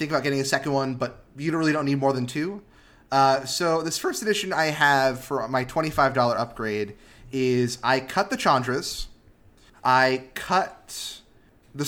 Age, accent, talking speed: 30-49, American, 165 wpm